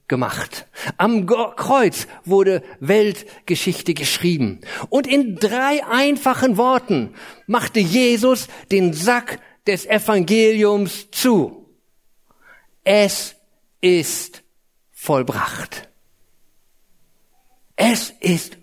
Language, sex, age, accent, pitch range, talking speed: German, male, 50-69, German, 170-225 Hz, 75 wpm